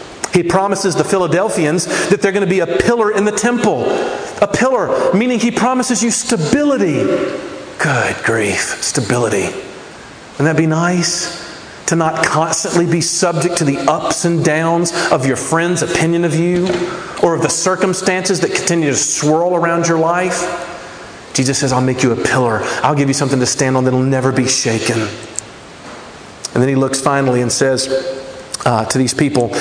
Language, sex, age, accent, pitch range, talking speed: English, male, 40-59, American, 135-190 Hz, 175 wpm